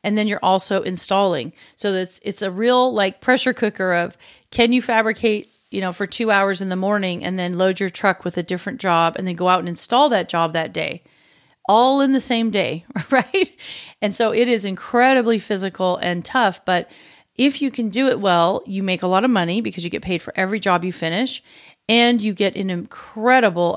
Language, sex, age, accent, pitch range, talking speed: English, female, 40-59, American, 180-225 Hz, 215 wpm